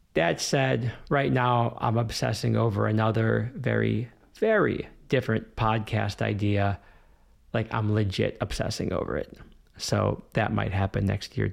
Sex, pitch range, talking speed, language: male, 100-140 Hz, 130 wpm, English